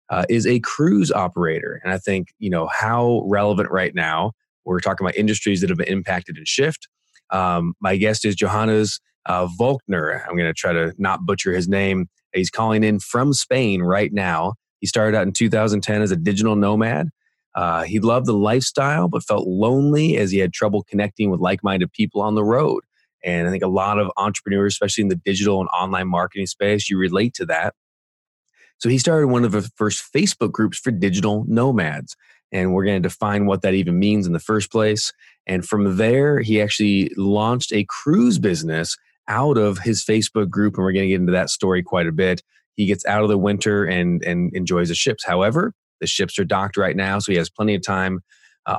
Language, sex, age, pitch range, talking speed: English, male, 20-39, 95-110 Hz, 205 wpm